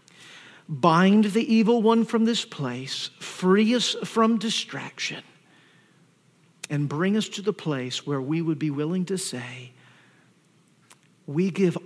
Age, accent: 50-69, American